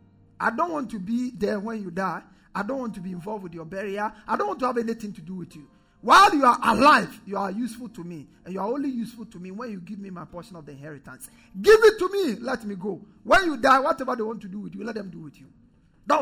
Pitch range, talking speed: 190-270 Hz, 280 wpm